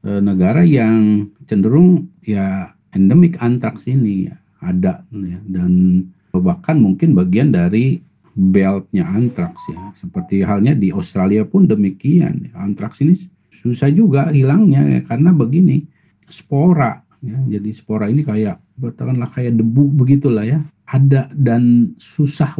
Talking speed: 120 wpm